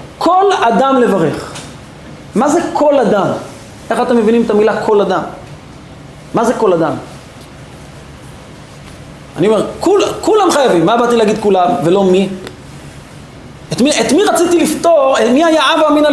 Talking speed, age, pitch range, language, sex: 140 wpm, 30-49, 205-310 Hz, English, male